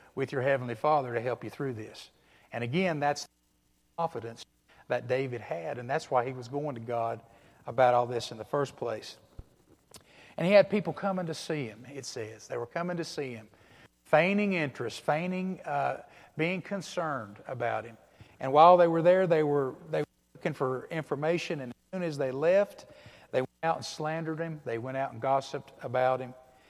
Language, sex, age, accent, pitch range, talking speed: English, male, 50-69, American, 120-160 Hz, 195 wpm